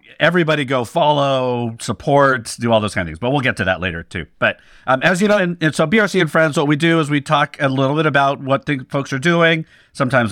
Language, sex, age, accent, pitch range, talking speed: English, male, 50-69, American, 100-140 Hz, 250 wpm